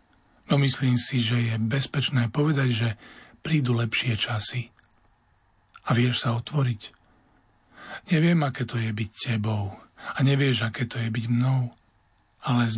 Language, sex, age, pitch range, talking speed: Slovak, male, 40-59, 115-140 Hz, 140 wpm